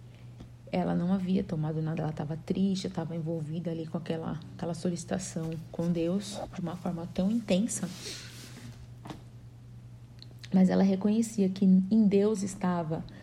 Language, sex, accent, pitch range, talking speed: Portuguese, female, Brazilian, 170-200 Hz, 130 wpm